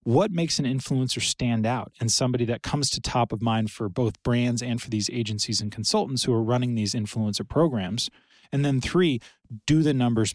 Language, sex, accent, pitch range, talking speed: English, male, American, 110-130 Hz, 205 wpm